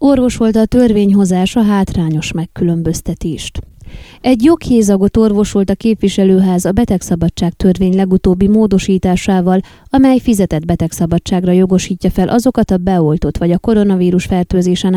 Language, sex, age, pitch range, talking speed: Hungarian, female, 30-49, 175-210 Hz, 115 wpm